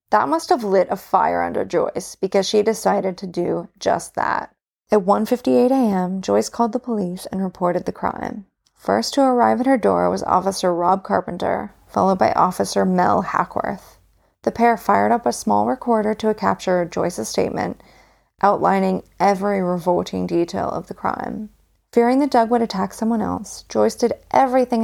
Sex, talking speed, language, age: female, 165 wpm, English, 30-49